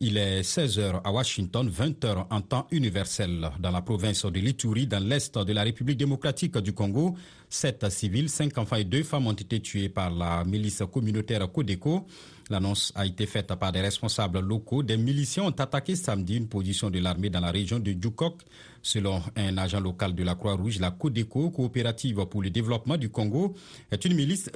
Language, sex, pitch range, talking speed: French, male, 100-135 Hz, 190 wpm